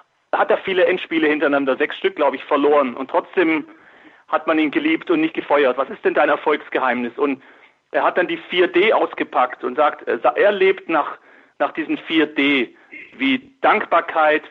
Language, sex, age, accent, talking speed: German, male, 40-59, German, 170 wpm